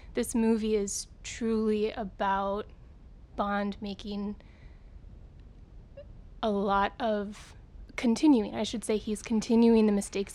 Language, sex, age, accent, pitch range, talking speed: English, female, 20-39, American, 205-230 Hz, 105 wpm